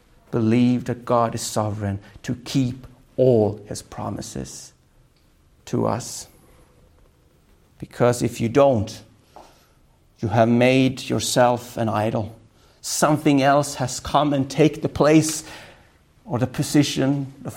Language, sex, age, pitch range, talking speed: English, male, 50-69, 110-135 Hz, 115 wpm